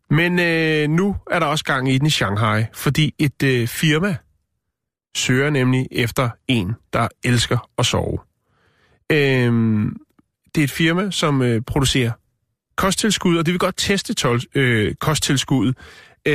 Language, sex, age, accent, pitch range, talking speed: Danish, male, 30-49, native, 115-155 Hz, 150 wpm